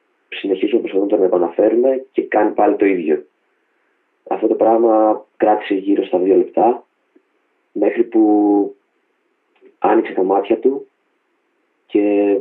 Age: 30-49